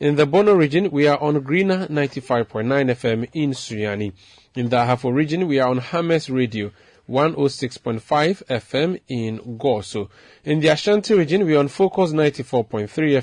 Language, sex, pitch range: English, male, 115-145 Hz